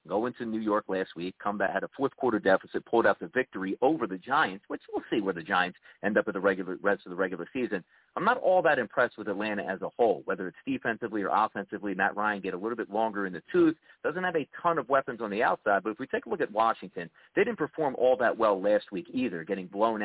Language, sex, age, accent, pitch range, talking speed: English, male, 40-59, American, 100-135 Hz, 265 wpm